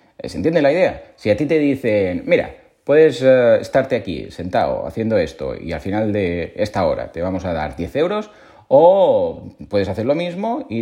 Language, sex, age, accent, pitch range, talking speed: Spanish, male, 30-49, Spanish, 90-155 Hz, 195 wpm